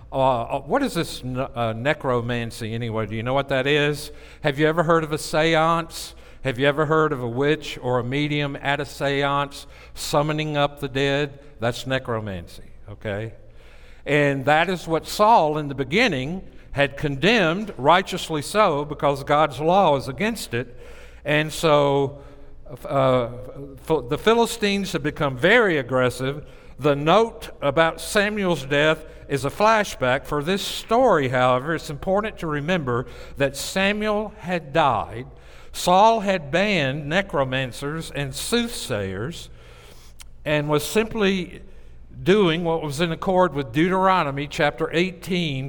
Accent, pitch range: American, 130-170 Hz